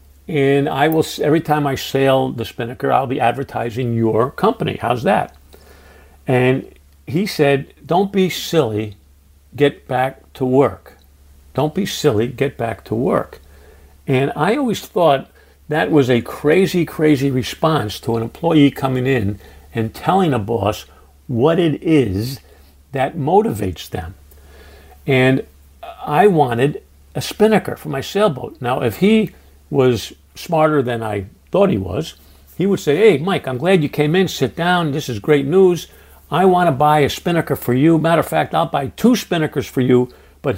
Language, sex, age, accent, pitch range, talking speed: English, male, 50-69, American, 115-155 Hz, 165 wpm